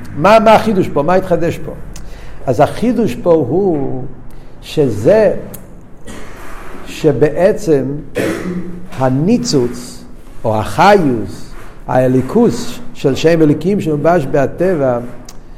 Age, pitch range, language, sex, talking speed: 60-79, 125-170 Hz, Hebrew, male, 85 wpm